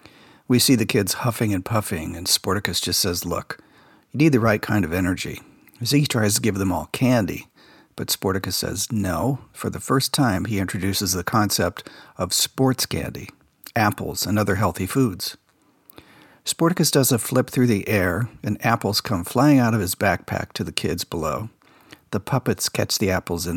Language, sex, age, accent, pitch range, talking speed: English, male, 50-69, American, 95-120 Hz, 185 wpm